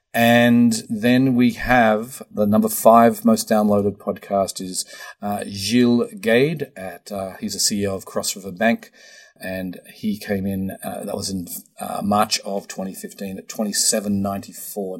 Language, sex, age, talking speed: English, male, 40-59, 150 wpm